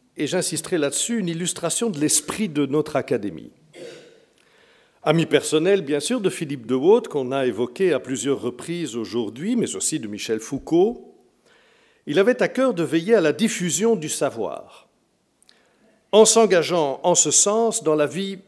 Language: French